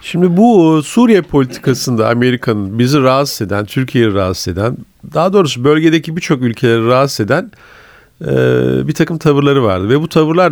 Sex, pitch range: male, 110-155 Hz